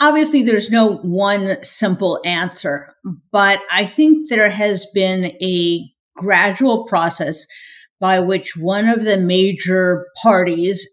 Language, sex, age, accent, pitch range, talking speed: English, female, 50-69, American, 175-210 Hz, 120 wpm